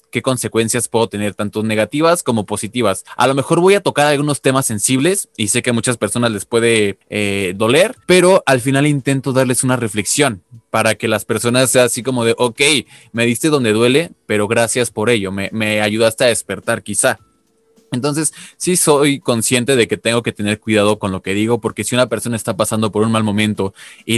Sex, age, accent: male, 20-39, Mexican